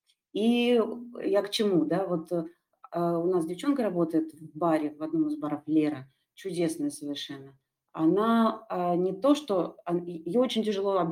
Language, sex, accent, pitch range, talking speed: Russian, female, native, 155-210 Hz, 150 wpm